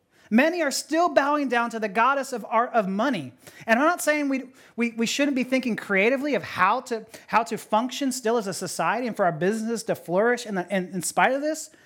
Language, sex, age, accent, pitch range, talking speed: English, male, 30-49, American, 195-275 Hz, 230 wpm